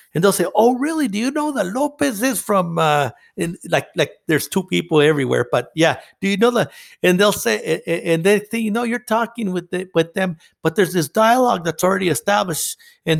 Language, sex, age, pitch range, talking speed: English, male, 60-79, 145-195 Hz, 220 wpm